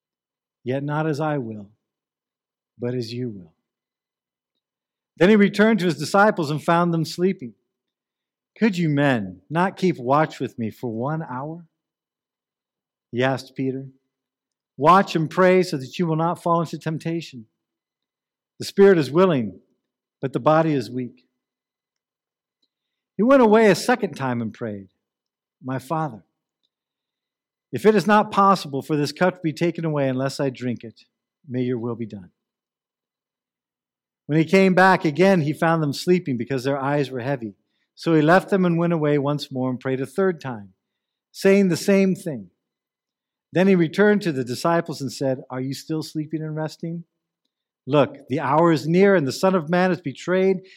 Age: 50-69